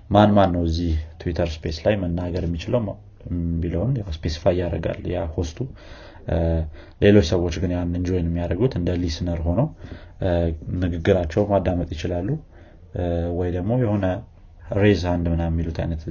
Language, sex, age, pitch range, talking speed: Amharic, male, 30-49, 80-90 Hz, 125 wpm